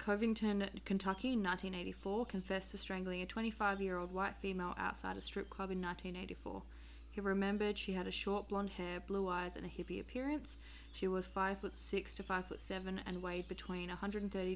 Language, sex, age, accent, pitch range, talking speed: English, female, 20-39, Australian, 180-200 Hz, 190 wpm